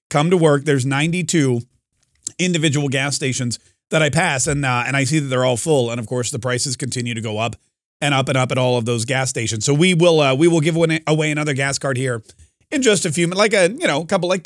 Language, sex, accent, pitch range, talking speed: English, male, American, 125-165 Hz, 260 wpm